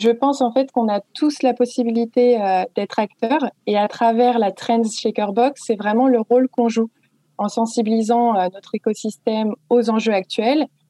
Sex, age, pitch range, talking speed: female, 20-39, 210-245 Hz, 170 wpm